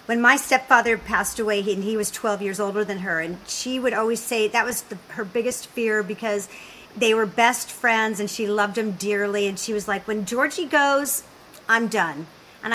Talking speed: 200 wpm